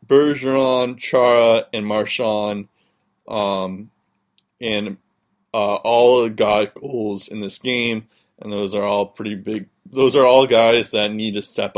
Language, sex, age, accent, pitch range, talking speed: English, male, 20-39, American, 100-125 Hz, 150 wpm